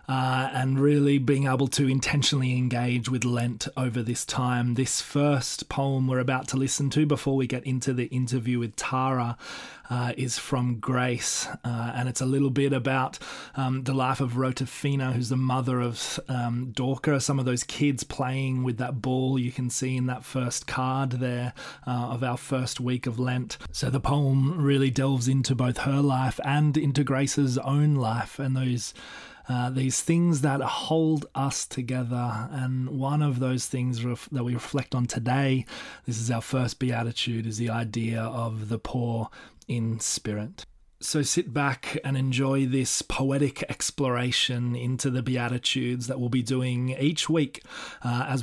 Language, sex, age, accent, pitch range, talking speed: English, male, 30-49, Australian, 125-135 Hz, 170 wpm